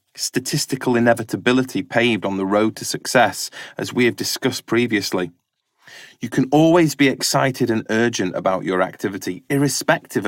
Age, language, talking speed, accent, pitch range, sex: 30-49, English, 140 wpm, British, 100-145 Hz, male